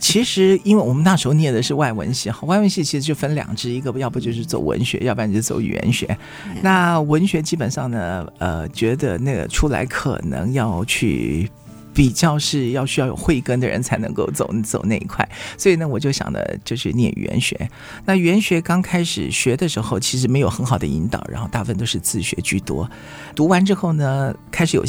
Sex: male